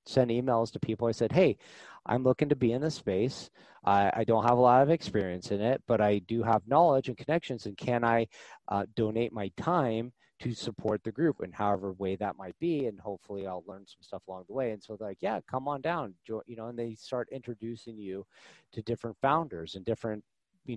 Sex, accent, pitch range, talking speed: male, American, 100-125 Hz, 225 wpm